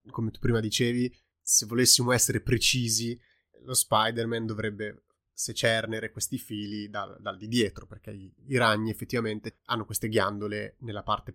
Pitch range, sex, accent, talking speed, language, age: 105-120 Hz, male, native, 150 wpm, Italian, 20-39